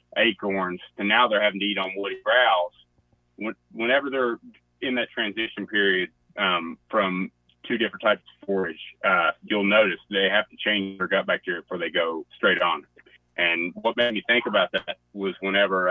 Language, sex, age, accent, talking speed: English, male, 30-49, American, 180 wpm